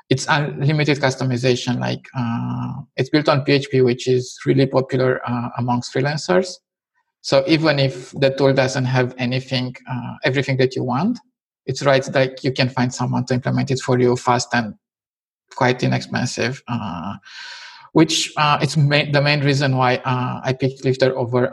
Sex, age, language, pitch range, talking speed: male, 50-69, English, 125-150 Hz, 165 wpm